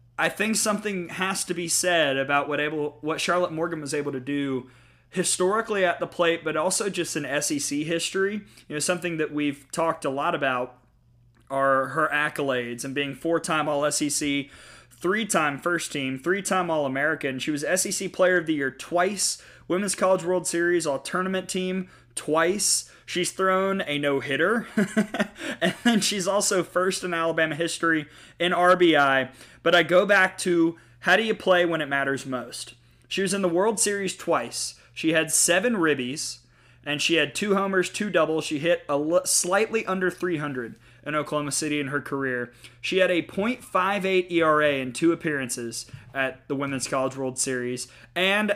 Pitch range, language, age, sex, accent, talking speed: 135-180 Hz, English, 30-49, male, American, 165 wpm